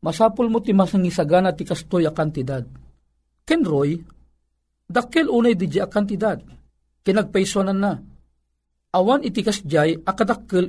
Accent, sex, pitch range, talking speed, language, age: native, male, 145-205 Hz, 120 wpm, Filipino, 50-69